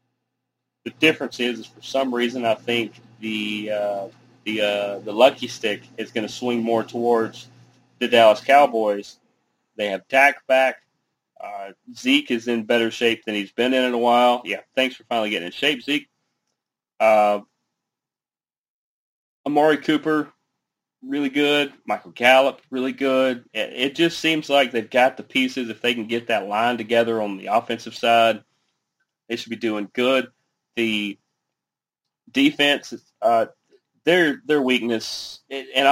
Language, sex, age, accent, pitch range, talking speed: English, male, 30-49, American, 105-130 Hz, 150 wpm